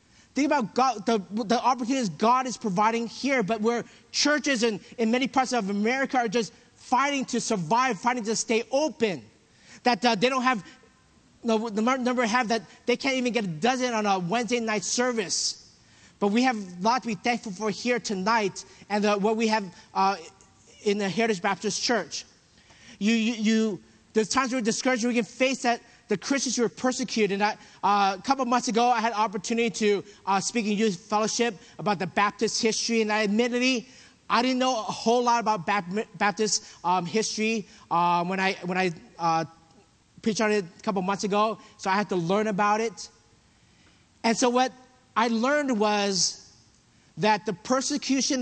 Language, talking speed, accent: English, 180 wpm, American